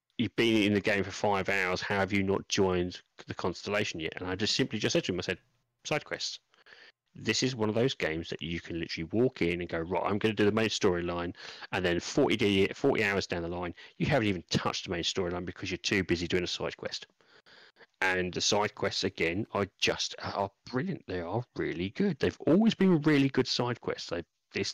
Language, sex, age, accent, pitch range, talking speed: English, male, 30-49, British, 100-135 Hz, 230 wpm